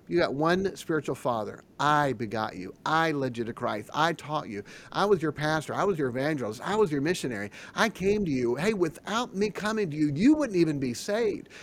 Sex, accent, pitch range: male, American, 120-180 Hz